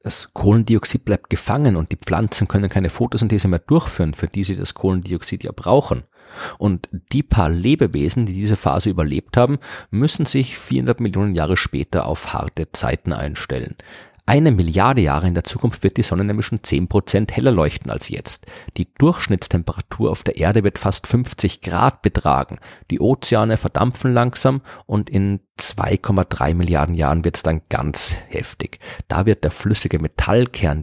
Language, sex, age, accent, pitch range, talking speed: German, male, 40-59, German, 85-110 Hz, 160 wpm